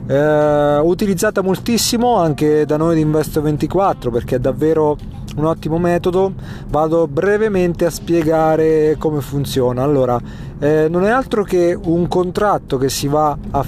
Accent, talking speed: native, 145 wpm